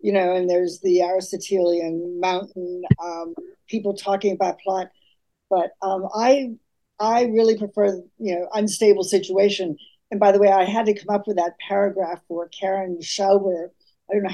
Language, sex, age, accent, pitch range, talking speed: English, female, 50-69, American, 185-225 Hz, 165 wpm